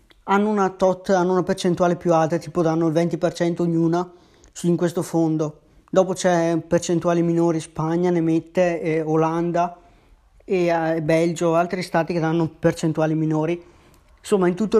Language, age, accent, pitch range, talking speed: Italian, 20-39, native, 160-195 Hz, 145 wpm